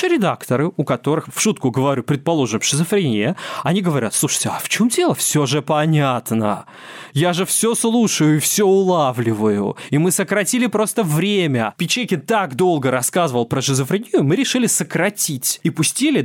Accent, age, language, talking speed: native, 20-39, Russian, 150 wpm